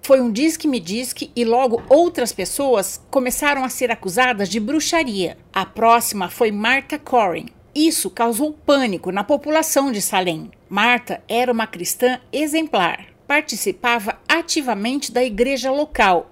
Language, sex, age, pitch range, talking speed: Portuguese, female, 60-79, 215-290 Hz, 130 wpm